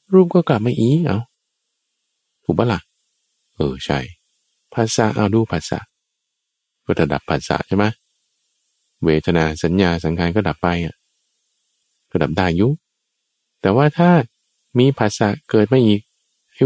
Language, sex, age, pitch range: Thai, male, 20-39, 80-130 Hz